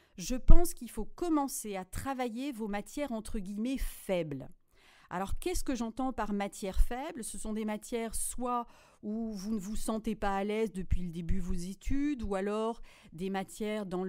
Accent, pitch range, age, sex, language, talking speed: French, 180-230 Hz, 40-59, female, French, 185 wpm